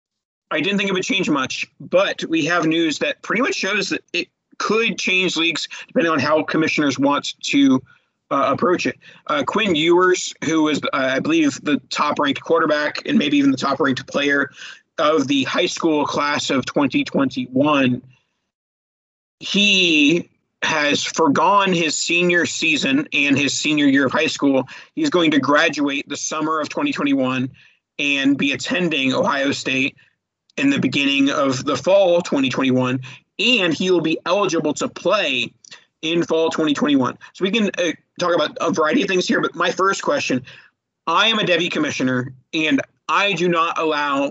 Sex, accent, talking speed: male, American, 165 wpm